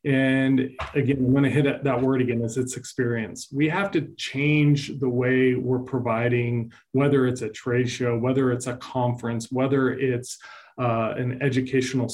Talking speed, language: 170 wpm, English